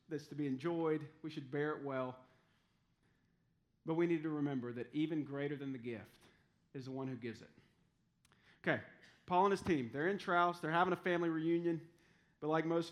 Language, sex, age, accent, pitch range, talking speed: English, male, 40-59, American, 140-170 Hz, 195 wpm